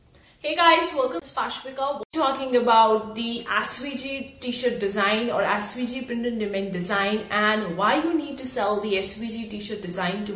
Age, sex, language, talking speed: 30-49, female, English, 155 wpm